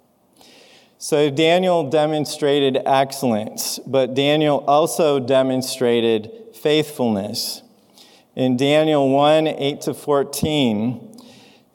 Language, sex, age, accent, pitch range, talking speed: English, male, 40-59, American, 130-165 Hz, 65 wpm